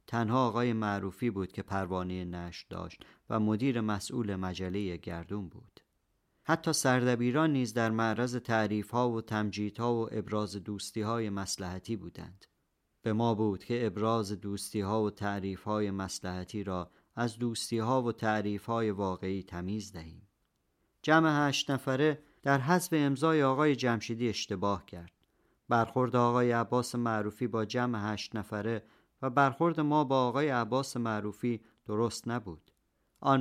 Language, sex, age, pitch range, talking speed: Persian, male, 40-59, 105-125 Hz, 135 wpm